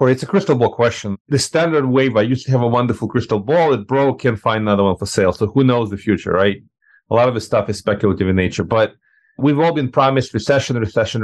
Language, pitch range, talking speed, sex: English, 110-140 Hz, 245 wpm, male